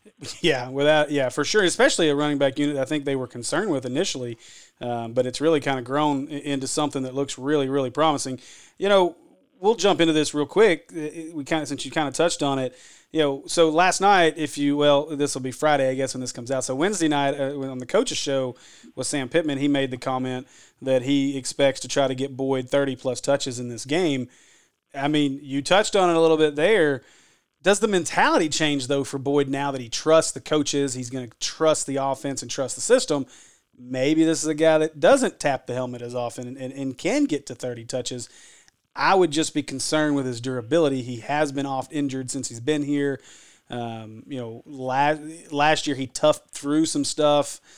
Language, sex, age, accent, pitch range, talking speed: English, male, 30-49, American, 130-150 Hz, 220 wpm